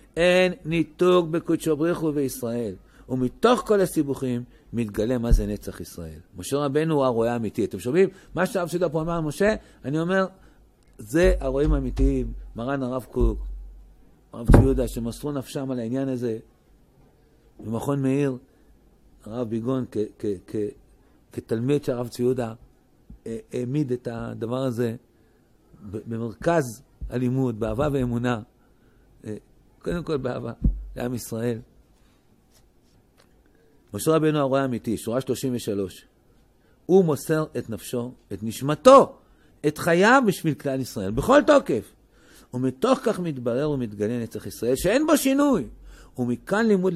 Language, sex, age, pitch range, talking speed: Hebrew, male, 50-69, 115-170 Hz, 115 wpm